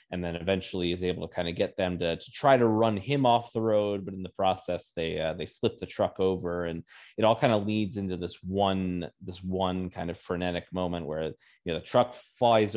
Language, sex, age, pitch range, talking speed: English, male, 20-39, 90-105 Hz, 240 wpm